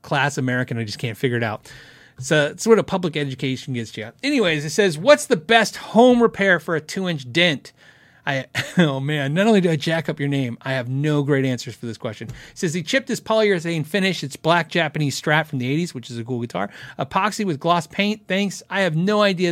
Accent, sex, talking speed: American, male, 230 wpm